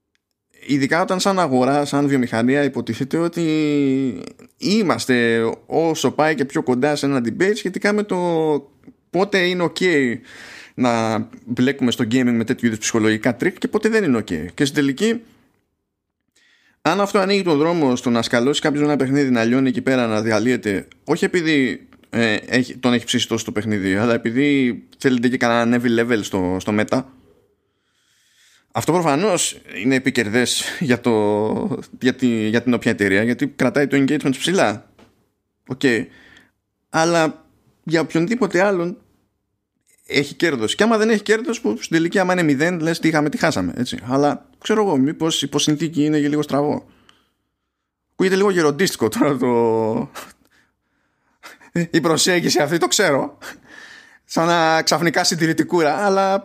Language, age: Greek, 20-39